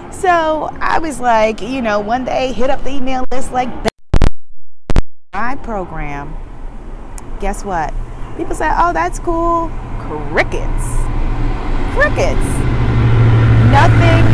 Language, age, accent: English, 30-49, American